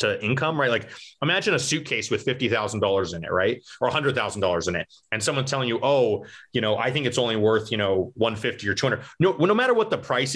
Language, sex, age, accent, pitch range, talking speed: English, male, 30-49, American, 100-125 Hz, 225 wpm